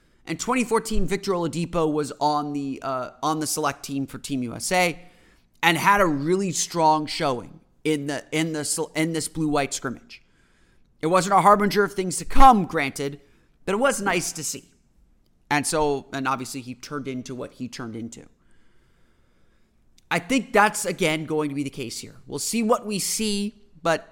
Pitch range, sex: 140-185 Hz, male